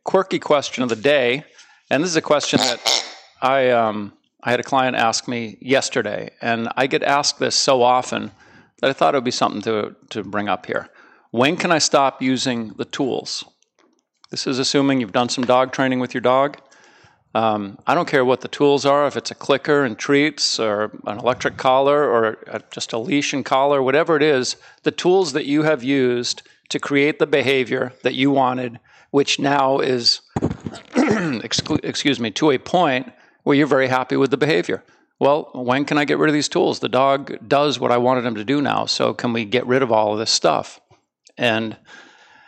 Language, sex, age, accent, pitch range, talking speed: English, male, 50-69, American, 120-140 Hz, 200 wpm